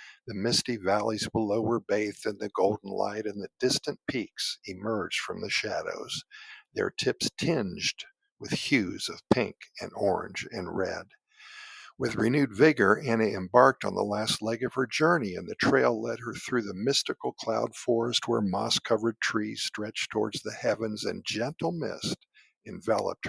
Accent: American